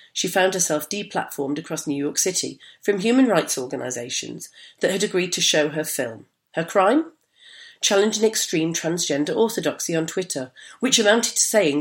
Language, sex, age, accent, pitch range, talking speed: English, female, 40-59, British, 150-210 Hz, 160 wpm